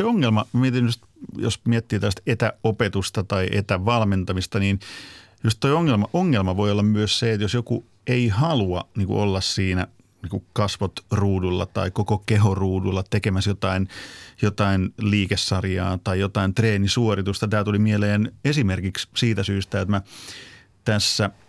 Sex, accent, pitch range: male, native, 95-115 Hz